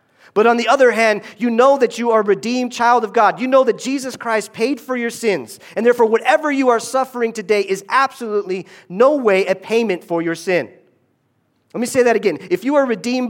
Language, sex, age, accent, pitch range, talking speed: English, male, 40-59, American, 125-205 Hz, 220 wpm